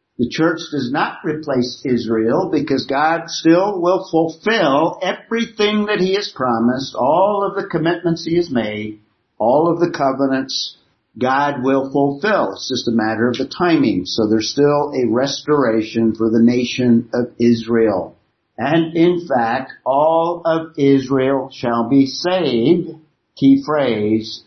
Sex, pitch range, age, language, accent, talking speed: male, 115-160 Hz, 50-69, English, American, 140 wpm